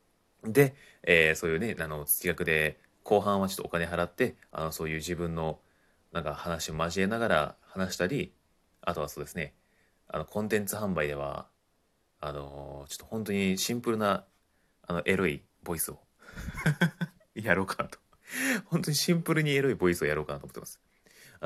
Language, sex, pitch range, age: Japanese, male, 80-110 Hz, 30-49